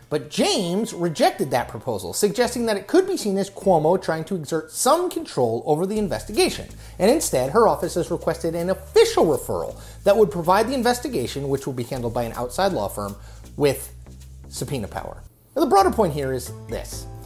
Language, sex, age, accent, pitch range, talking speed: English, male, 30-49, American, 130-210 Hz, 185 wpm